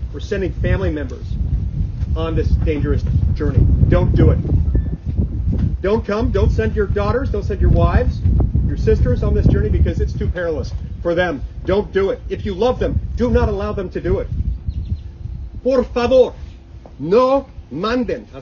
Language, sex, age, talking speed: English, male, 40-59, 165 wpm